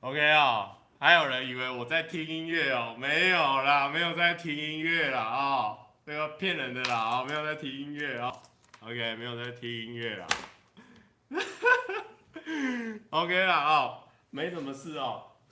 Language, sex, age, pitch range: Chinese, male, 30-49, 110-150 Hz